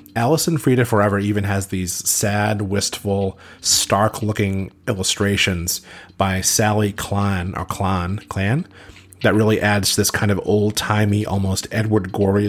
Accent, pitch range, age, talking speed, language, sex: American, 95-115 Hz, 30-49, 140 wpm, English, male